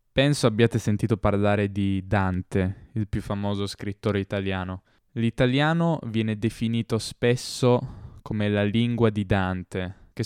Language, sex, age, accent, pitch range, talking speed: Italian, male, 10-29, native, 100-120 Hz, 125 wpm